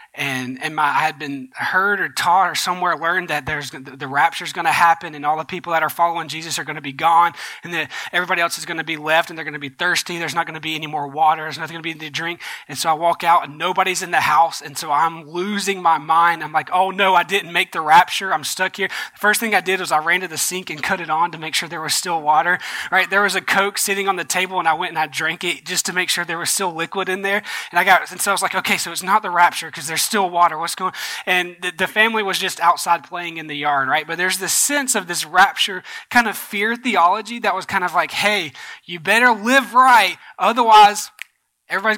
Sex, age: male, 20-39